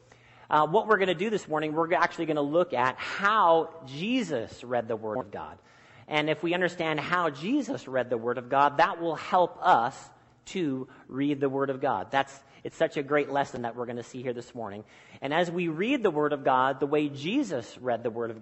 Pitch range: 130-175 Hz